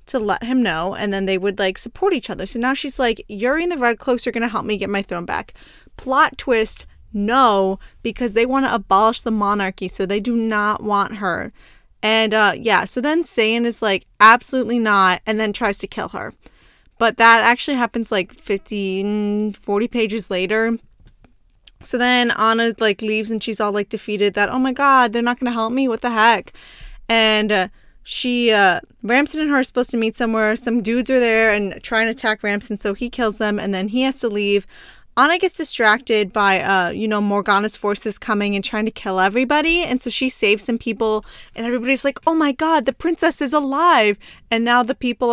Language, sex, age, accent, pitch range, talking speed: English, female, 20-39, American, 205-245 Hz, 210 wpm